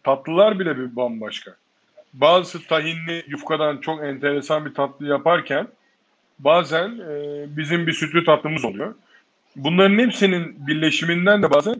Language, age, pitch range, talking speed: Turkish, 50-69, 145-195 Hz, 120 wpm